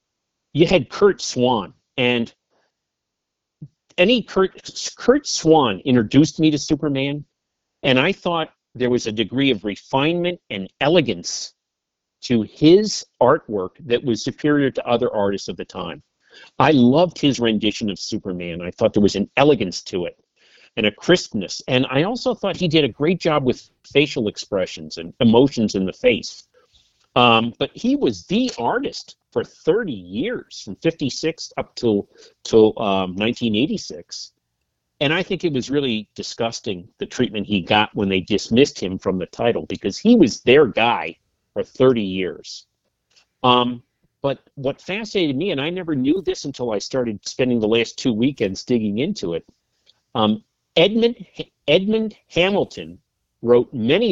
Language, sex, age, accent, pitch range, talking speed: English, male, 50-69, American, 110-170 Hz, 150 wpm